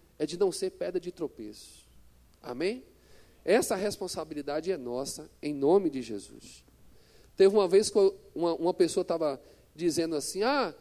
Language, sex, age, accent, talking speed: Portuguese, male, 40-59, Brazilian, 155 wpm